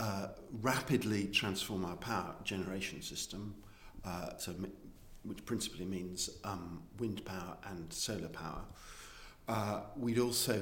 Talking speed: 125 wpm